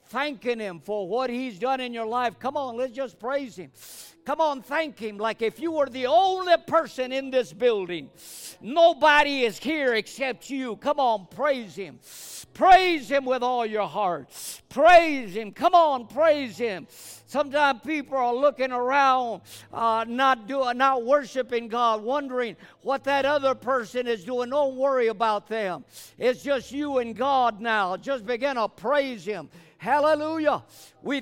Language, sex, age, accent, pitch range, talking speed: English, male, 50-69, American, 215-285 Hz, 160 wpm